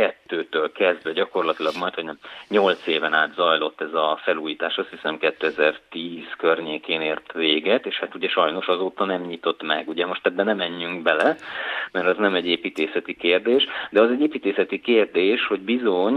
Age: 30-49